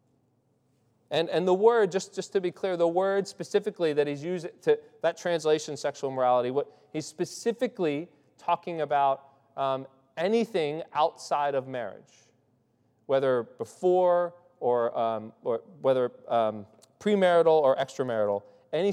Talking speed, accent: 125 wpm, American